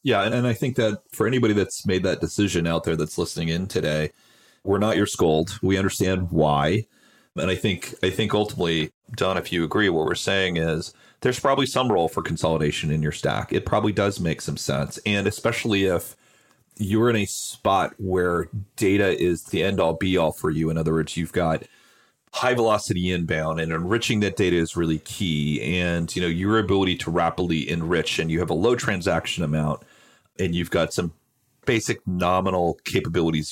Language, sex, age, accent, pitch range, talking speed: English, male, 40-59, American, 85-110 Hz, 190 wpm